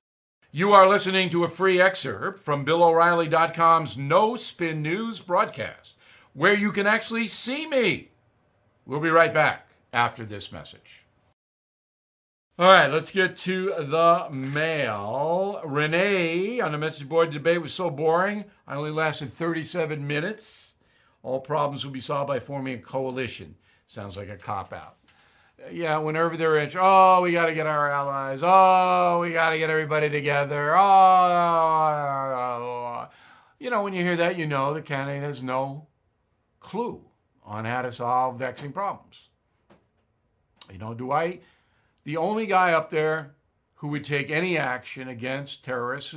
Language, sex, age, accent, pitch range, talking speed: English, male, 60-79, American, 130-185 Hz, 150 wpm